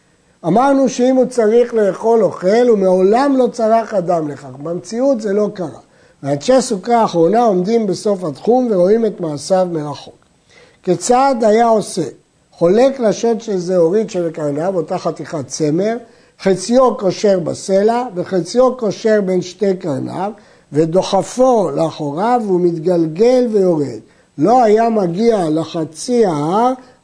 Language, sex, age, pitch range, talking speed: Hebrew, male, 60-79, 170-230 Hz, 125 wpm